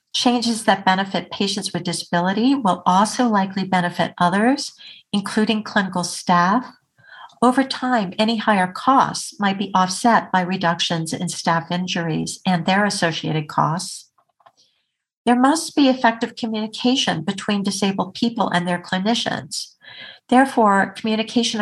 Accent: American